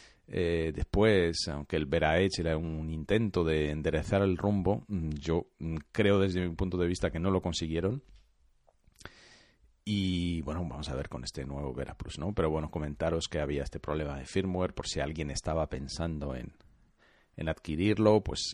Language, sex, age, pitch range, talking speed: Spanish, male, 40-59, 80-95 Hz, 170 wpm